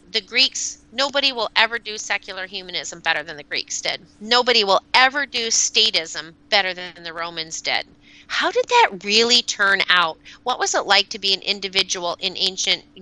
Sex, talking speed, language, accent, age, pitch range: female, 180 wpm, English, American, 30-49, 180-230 Hz